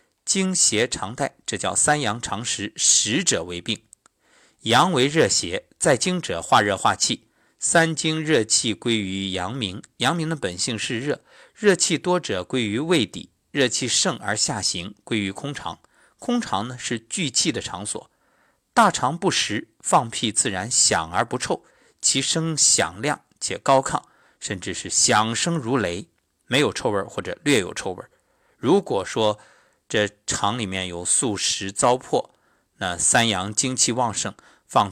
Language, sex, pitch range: Chinese, male, 105-170 Hz